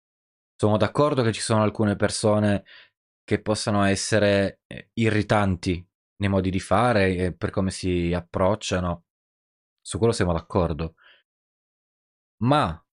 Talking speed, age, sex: 115 wpm, 20-39, male